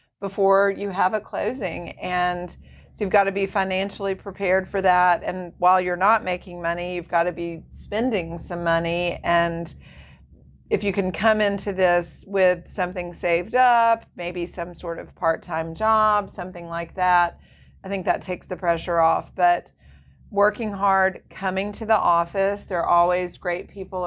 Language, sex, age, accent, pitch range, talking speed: English, female, 40-59, American, 175-200 Hz, 165 wpm